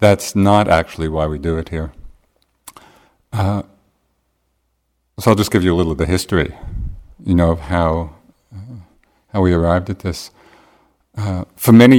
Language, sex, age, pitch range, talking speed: English, male, 50-69, 80-100 Hz, 155 wpm